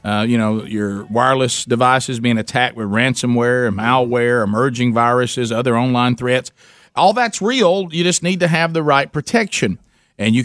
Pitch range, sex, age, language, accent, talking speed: 120-145 Hz, male, 50-69, English, American, 165 wpm